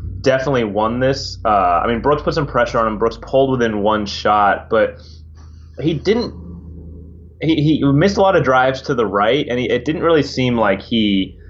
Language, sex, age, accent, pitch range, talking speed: English, male, 20-39, American, 105-140 Hz, 200 wpm